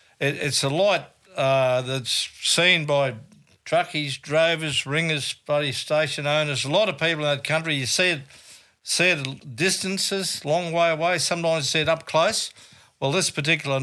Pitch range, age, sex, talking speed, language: 130-160 Hz, 60-79, male, 165 wpm, English